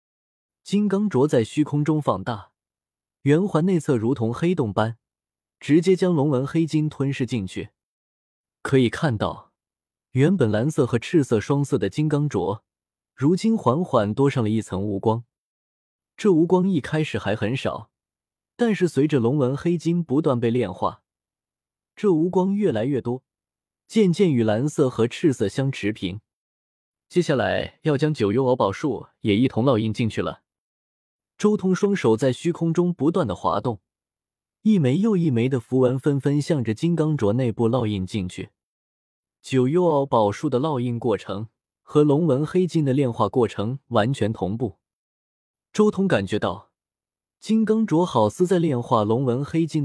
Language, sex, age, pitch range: Chinese, male, 20-39, 110-165 Hz